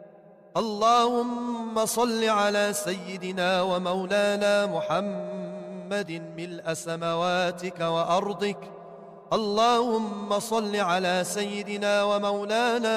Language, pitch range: English, 185-220 Hz